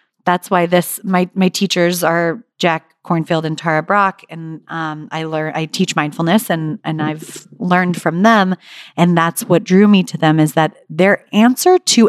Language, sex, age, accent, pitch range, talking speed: English, female, 30-49, American, 165-210 Hz, 185 wpm